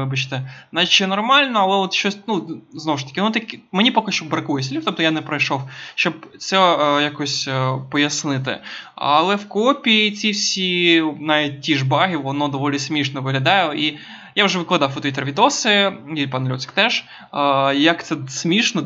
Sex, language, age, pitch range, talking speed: male, Ukrainian, 20-39, 140-180 Hz, 175 wpm